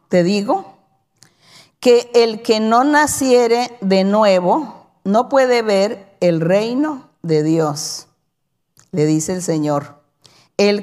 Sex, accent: female, American